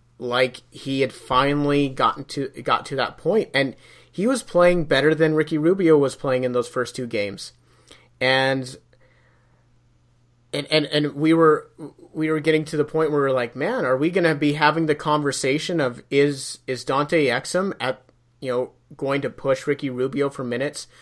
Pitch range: 125-145 Hz